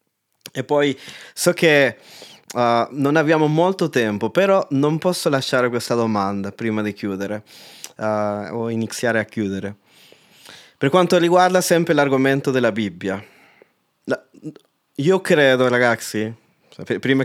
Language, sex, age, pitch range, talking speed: Italian, male, 20-39, 110-145 Hz, 120 wpm